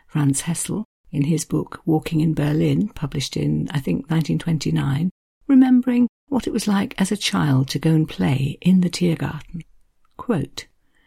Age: 50-69